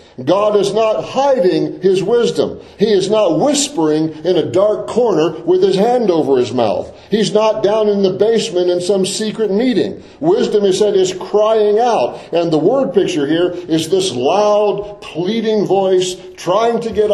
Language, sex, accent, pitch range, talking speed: English, male, American, 185-240 Hz, 170 wpm